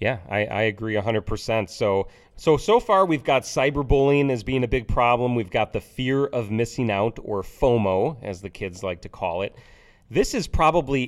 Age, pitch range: 30-49, 100-130 Hz